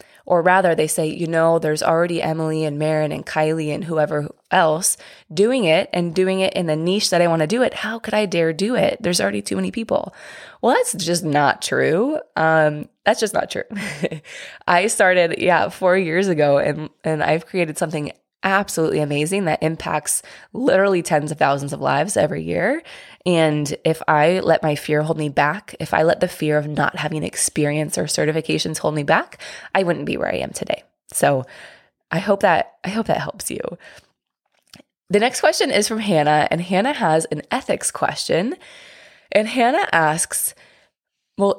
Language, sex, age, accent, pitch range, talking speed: English, female, 20-39, American, 155-200 Hz, 185 wpm